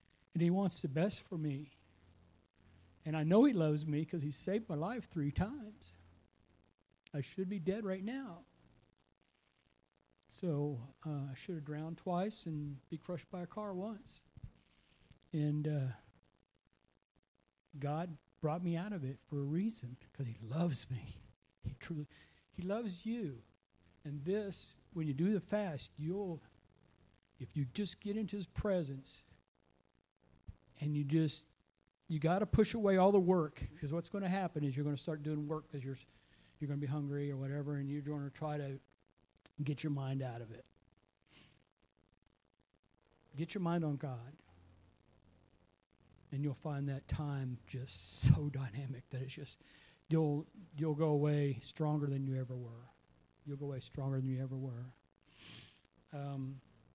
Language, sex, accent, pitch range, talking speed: English, male, American, 125-165 Hz, 160 wpm